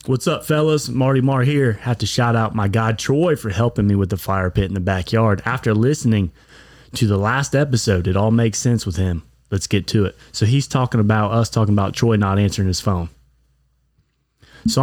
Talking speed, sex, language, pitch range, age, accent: 210 wpm, male, English, 95-125 Hz, 30-49, American